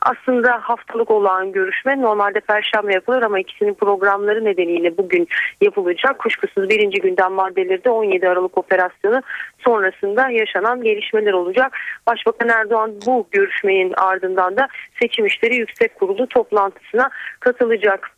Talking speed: 120 wpm